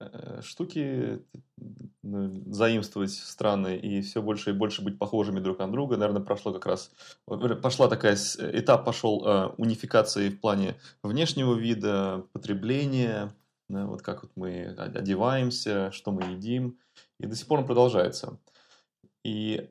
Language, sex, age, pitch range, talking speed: Russian, male, 20-39, 95-115 Hz, 130 wpm